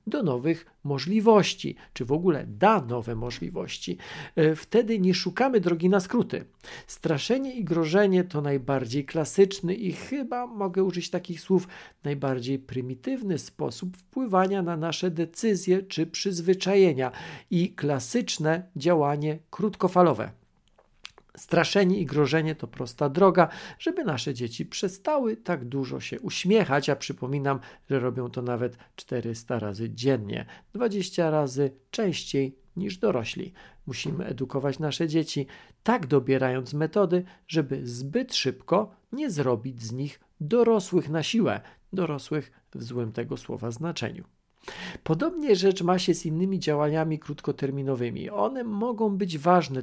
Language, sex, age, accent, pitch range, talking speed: Polish, male, 50-69, native, 135-190 Hz, 125 wpm